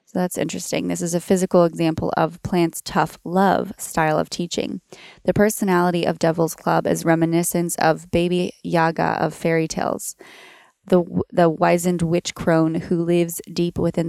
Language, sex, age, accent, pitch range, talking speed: English, female, 20-39, American, 165-190 Hz, 160 wpm